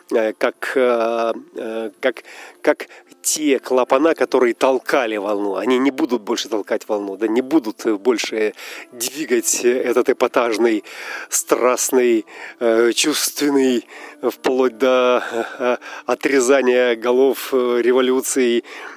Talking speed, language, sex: 90 wpm, Russian, male